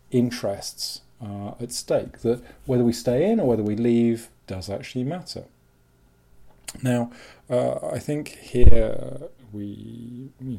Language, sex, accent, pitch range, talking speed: English, male, British, 100-125 Hz, 135 wpm